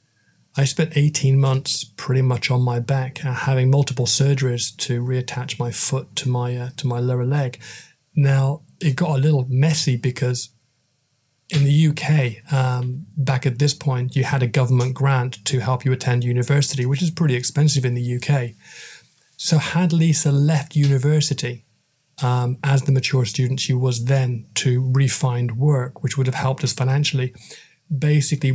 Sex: male